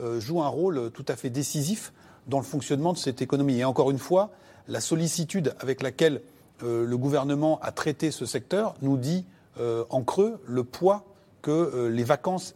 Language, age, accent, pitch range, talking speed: French, 40-59, French, 130-170 Hz, 170 wpm